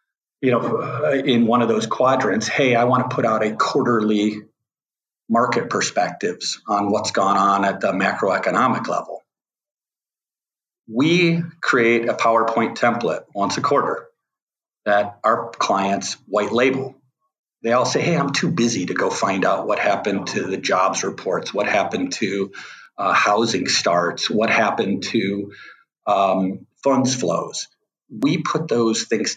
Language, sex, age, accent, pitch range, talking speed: English, male, 50-69, American, 105-130 Hz, 145 wpm